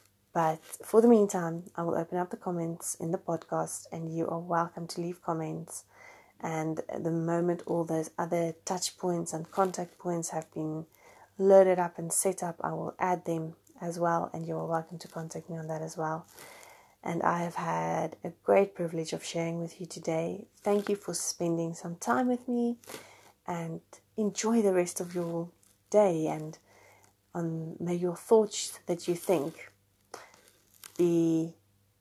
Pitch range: 155-180 Hz